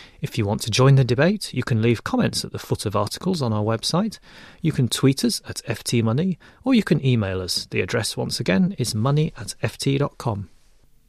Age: 30-49